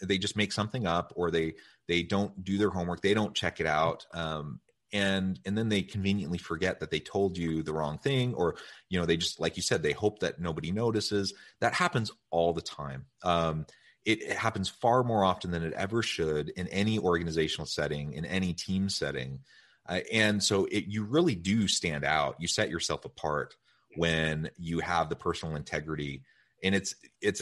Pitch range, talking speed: 85-125 Hz, 195 wpm